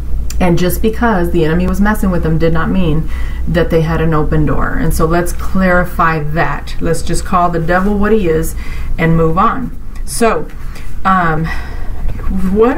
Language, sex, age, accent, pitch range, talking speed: English, female, 30-49, American, 155-185 Hz, 175 wpm